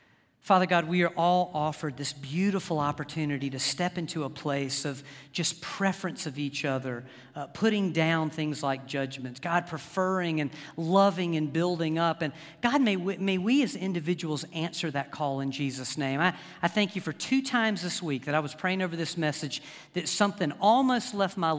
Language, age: English, 50-69